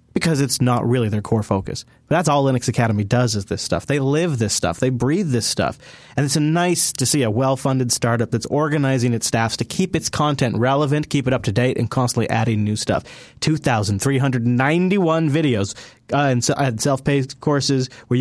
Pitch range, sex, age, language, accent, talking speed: 120-155 Hz, male, 30-49, English, American, 190 wpm